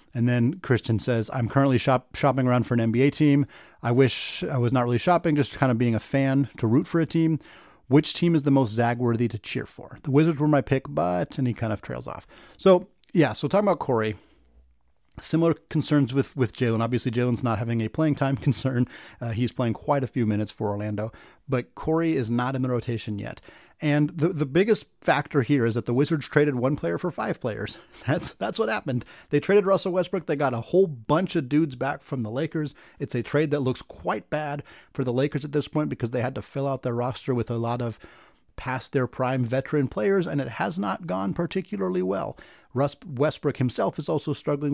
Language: English